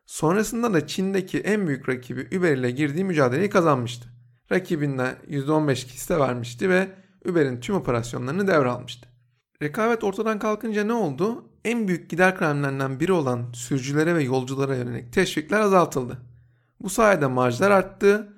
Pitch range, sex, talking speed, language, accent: 130-185 Hz, male, 135 wpm, Turkish, native